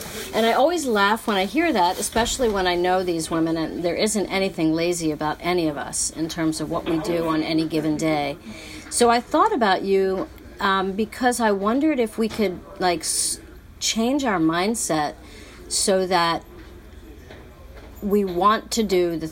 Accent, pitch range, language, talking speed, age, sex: American, 155-190 Hz, English, 175 wpm, 40-59, female